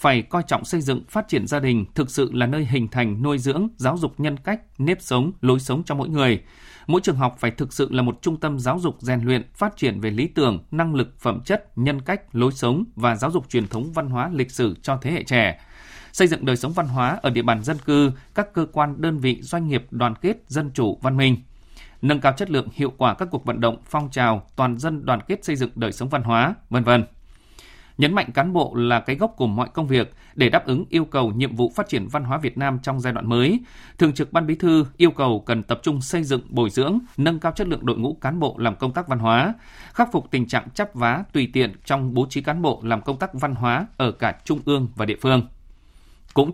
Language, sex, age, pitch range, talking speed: Vietnamese, male, 20-39, 125-155 Hz, 255 wpm